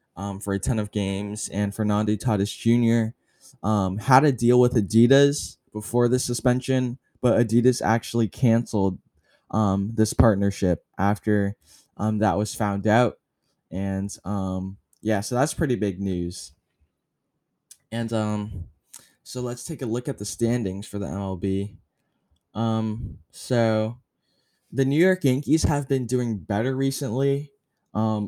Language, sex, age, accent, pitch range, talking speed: English, male, 10-29, American, 100-120 Hz, 140 wpm